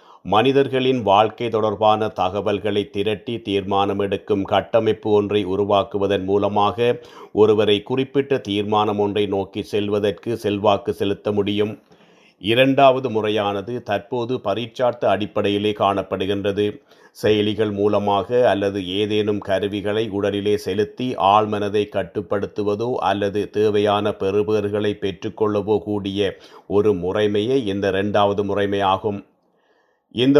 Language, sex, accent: Tamil, male, native